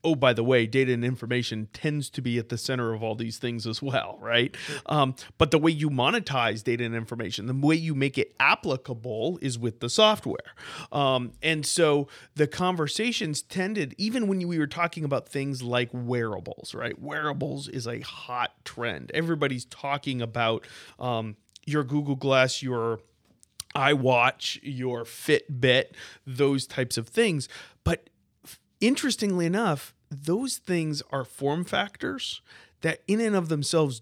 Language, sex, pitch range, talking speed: English, male, 125-160 Hz, 155 wpm